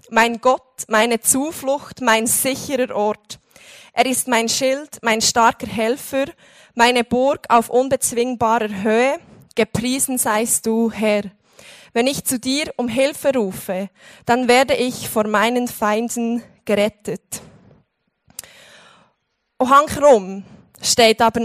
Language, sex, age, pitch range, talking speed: German, female, 20-39, 225-270 Hz, 115 wpm